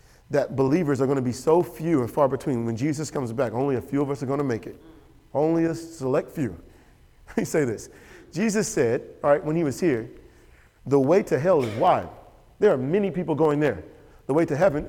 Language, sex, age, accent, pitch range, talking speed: English, male, 40-59, American, 170-240 Hz, 230 wpm